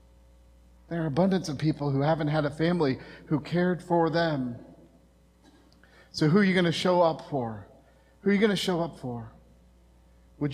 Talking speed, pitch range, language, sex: 180 wpm, 135-190 Hz, English, male